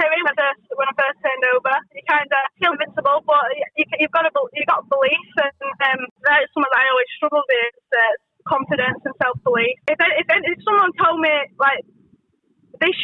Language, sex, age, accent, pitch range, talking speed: English, female, 10-29, British, 260-295 Hz, 180 wpm